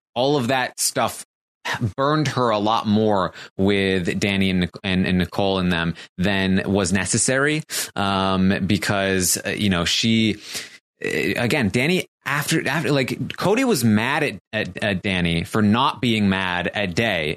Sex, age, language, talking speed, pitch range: male, 20-39, English, 150 wpm, 95-120 Hz